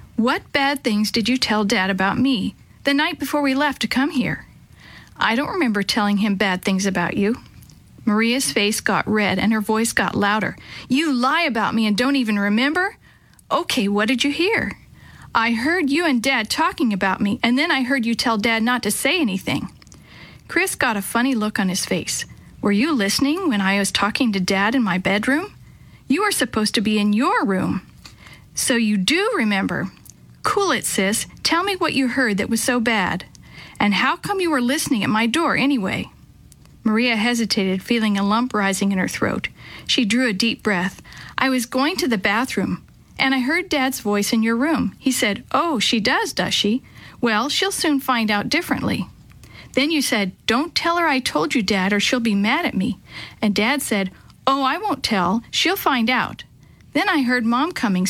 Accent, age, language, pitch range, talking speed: American, 50-69, English, 210-275 Hz, 200 wpm